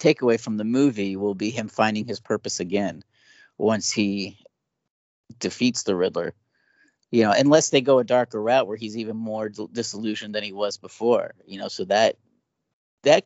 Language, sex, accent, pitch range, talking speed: English, male, American, 105-140 Hz, 170 wpm